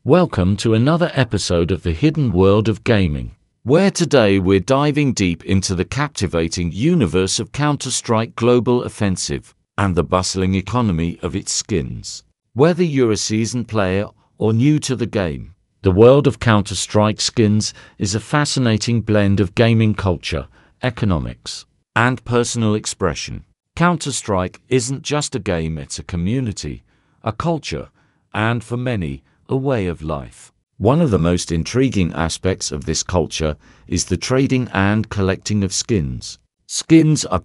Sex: male